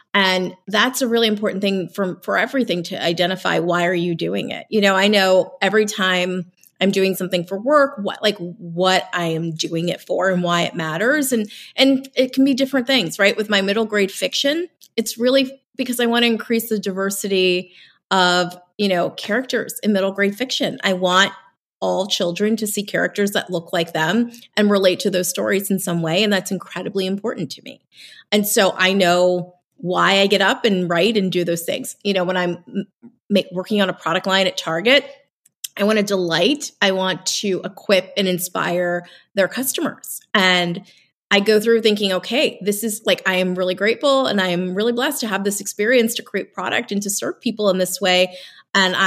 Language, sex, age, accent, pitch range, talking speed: English, female, 30-49, American, 180-220 Hz, 200 wpm